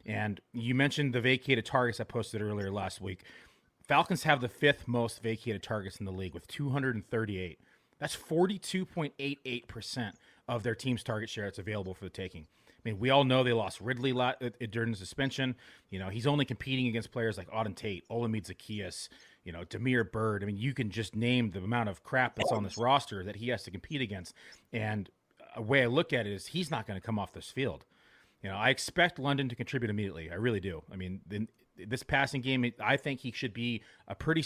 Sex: male